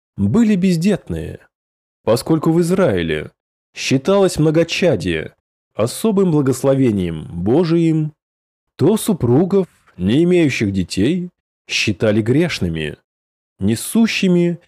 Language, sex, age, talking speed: Russian, male, 20-39, 75 wpm